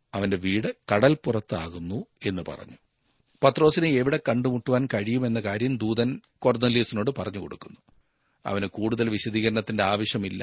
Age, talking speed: 40-59, 100 wpm